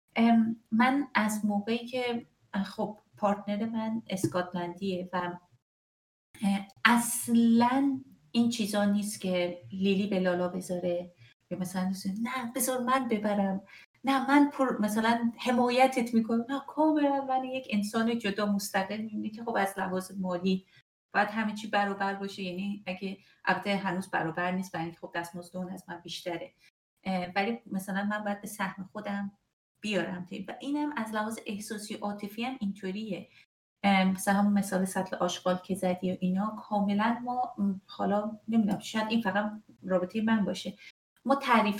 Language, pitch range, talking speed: Persian, 190-235 Hz, 140 wpm